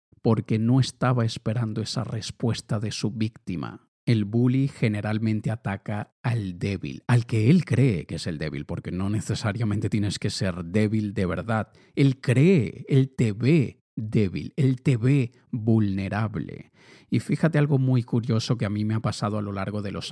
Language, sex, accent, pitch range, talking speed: Spanish, male, Spanish, 115-145 Hz, 175 wpm